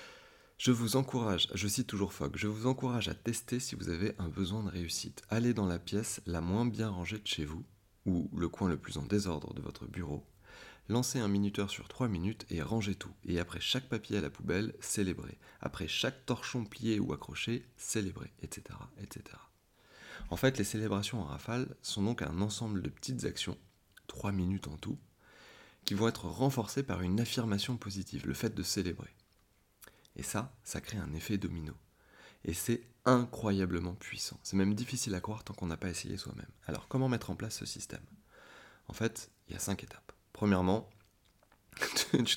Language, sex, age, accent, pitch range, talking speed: French, male, 30-49, French, 95-115 Hz, 190 wpm